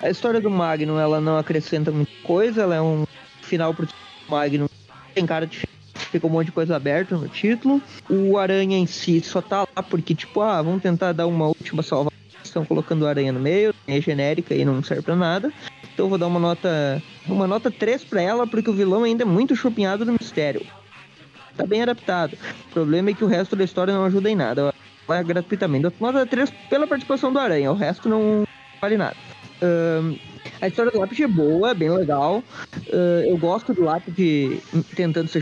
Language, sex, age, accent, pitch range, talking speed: Portuguese, male, 20-39, Brazilian, 150-195 Hz, 205 wpm